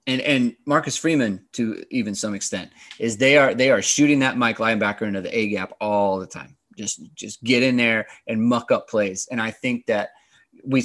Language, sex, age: English, male, 20-39